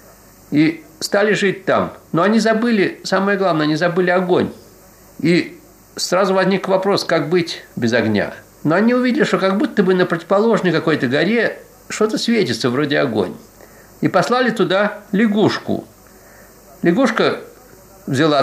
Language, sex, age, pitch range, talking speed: Russian, male, 60-79, 145-200 Hz, 135 wpm